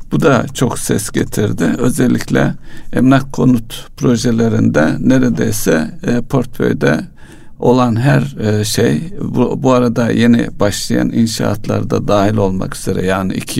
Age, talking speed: 60-79, 105 wpm